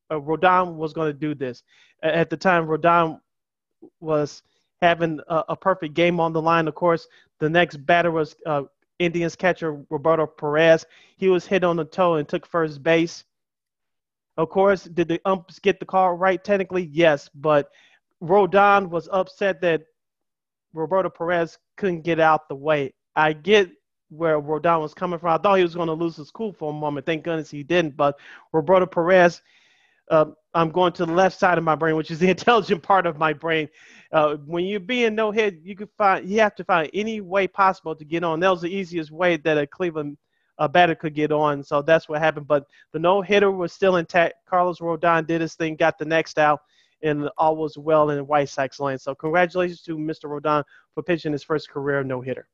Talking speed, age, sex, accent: 205 wpm, 30-49, male, American